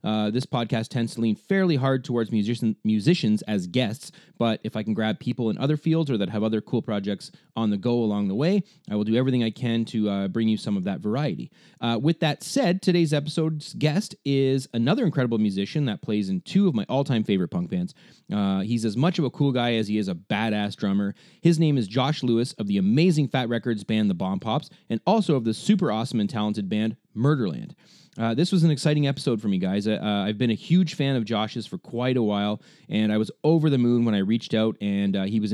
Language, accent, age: English, American, 30-49